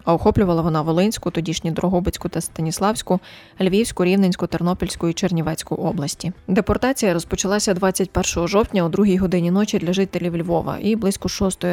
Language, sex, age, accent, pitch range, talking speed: Ukrainian, female, 20-39, native, 170-195 Hz, 145 wpm